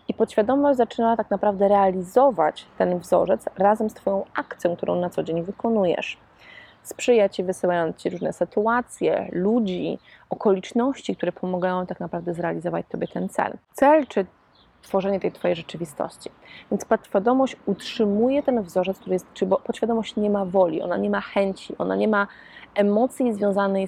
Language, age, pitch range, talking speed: Polish, 20-39, 185-230 Hz, 150 wpm